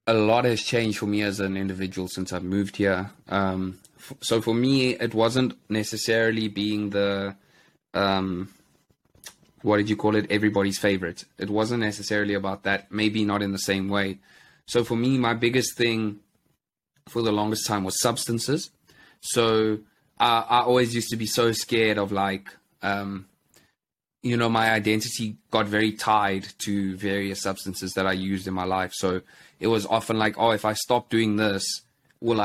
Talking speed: 170 wpm